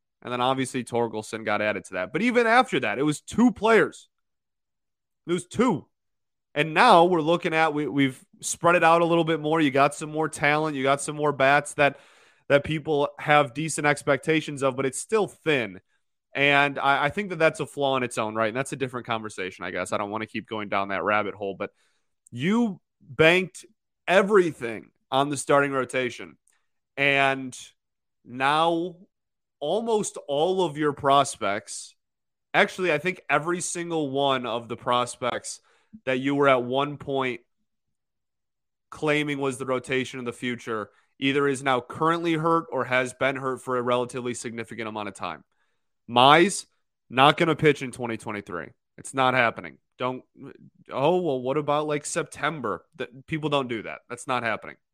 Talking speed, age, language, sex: 175 wpm, 30-49, English, male